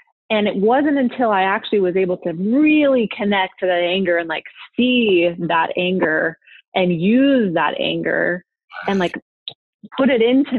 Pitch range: 175-220 Hz